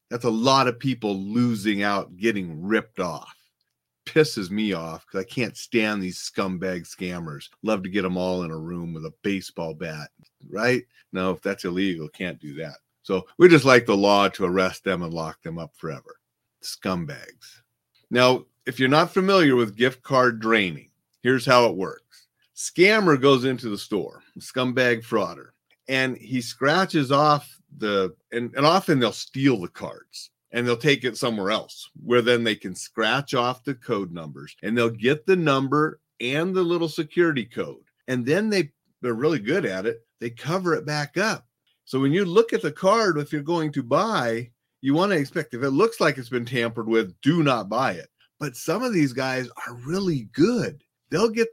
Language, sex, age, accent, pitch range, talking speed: English, male, 40-59, American, 105-150 Hz, 190 wpm